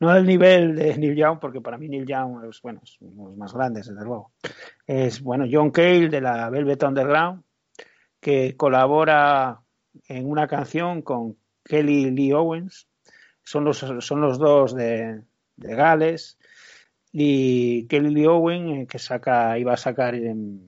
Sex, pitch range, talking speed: male, 125-155 Hz, 155 wpm